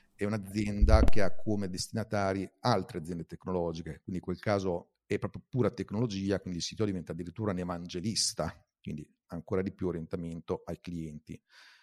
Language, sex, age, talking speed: Italian, male, 40-59, 155 wpm